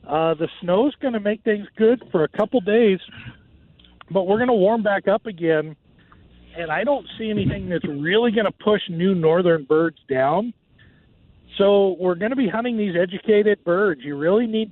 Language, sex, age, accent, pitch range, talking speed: English, male, 50-69, American, 145-190 Hz, 190 wpm